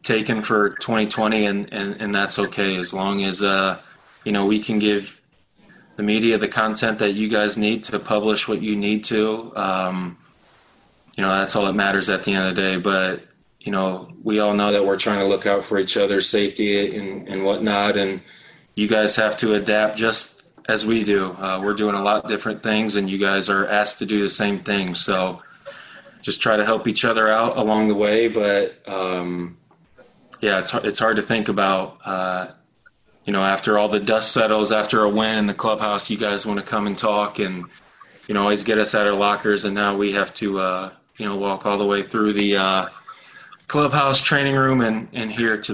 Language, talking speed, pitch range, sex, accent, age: English, 215 wpm, 100-110 Hz, male, American, 20-39